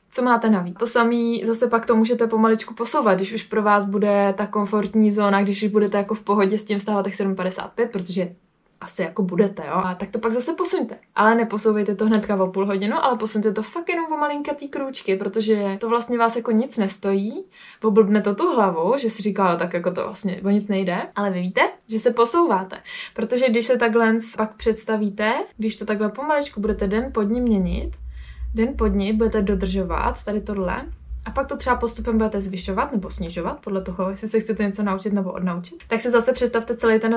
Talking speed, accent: 210 wpm, native